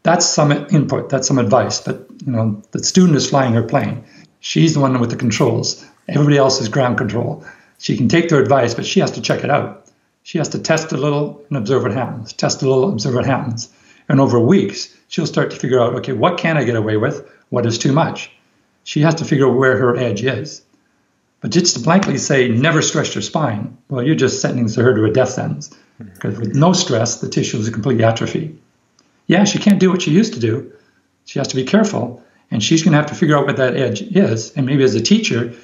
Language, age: English, 60-79